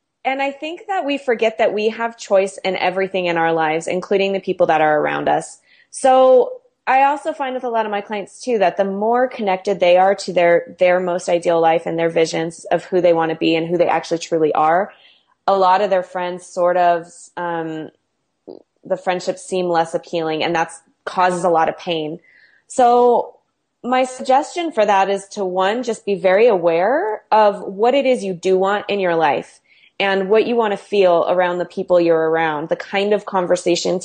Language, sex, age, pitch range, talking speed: English, female, 20-39, 170-205 Hz, 205 wpm